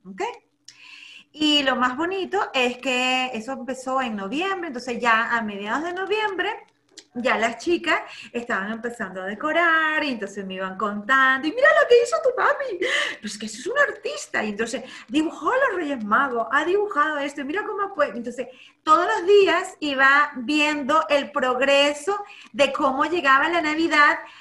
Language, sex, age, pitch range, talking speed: Spanish, female, 30-49, 230-320 Hz, 170 wpm